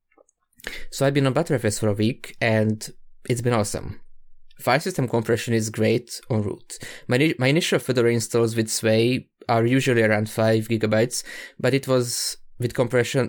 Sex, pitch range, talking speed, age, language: male, 110-125 Hz, 165 wpm, 20-39, English